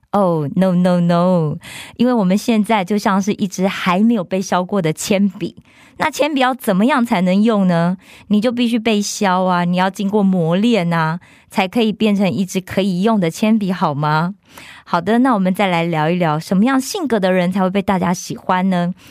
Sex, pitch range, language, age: female, 175-230 Hz, Korean, 20-39